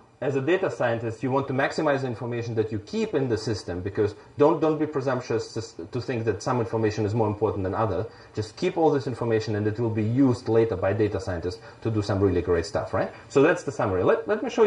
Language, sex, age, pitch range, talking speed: English, male, 30-49, 110-135 Hz, 250 wpm